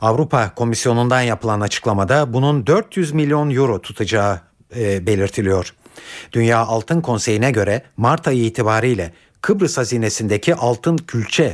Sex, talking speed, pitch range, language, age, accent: male, 115 wpm, 110-160 Hz, Turkish, 60-79, native